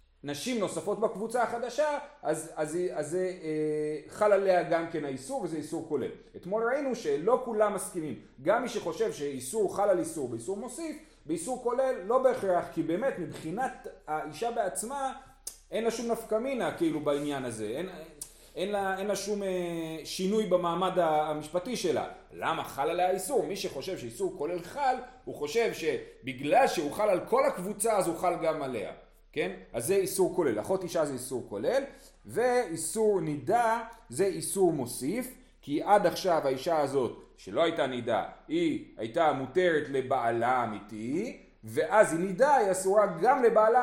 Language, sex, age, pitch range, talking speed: Hebrew, male, 40-59, 165-250 Hz, 160 wpm